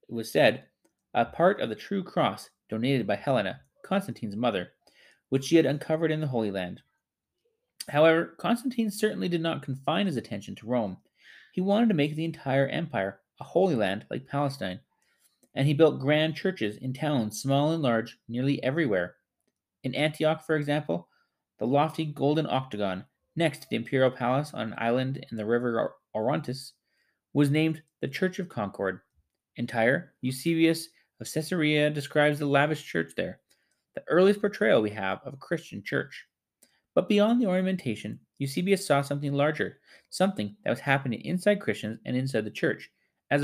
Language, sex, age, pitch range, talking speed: English, male, 30-49, 120-160 Hz, 165 wpm